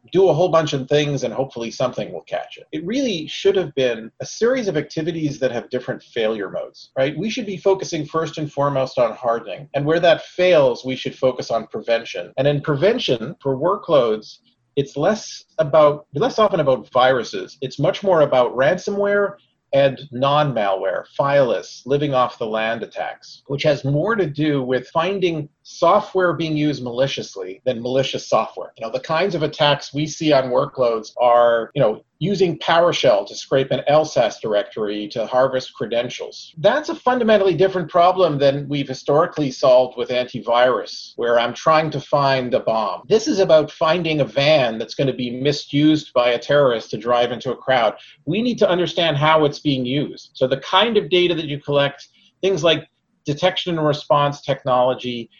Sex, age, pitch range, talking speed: male, 40-59, 130-170 Hz, 180 wpm